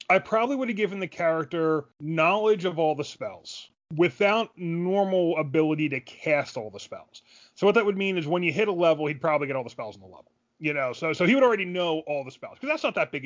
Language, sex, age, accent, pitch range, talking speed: English, male, 30-49, American, 145-185 Hz, 255 wpm